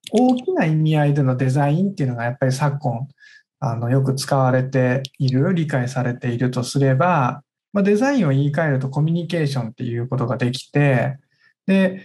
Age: 20-39